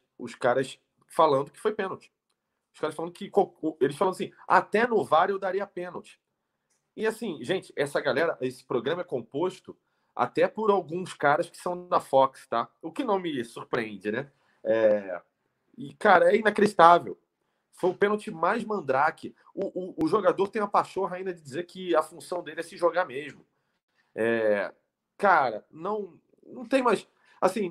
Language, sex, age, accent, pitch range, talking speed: Portuguese, male, 40-59, Brazilian, 125-195 Hz, 170 wpm